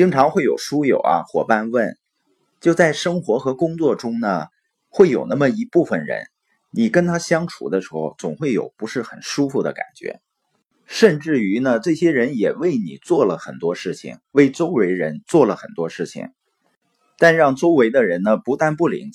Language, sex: Chinese, male